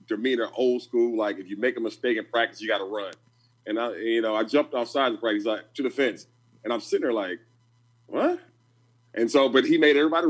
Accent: American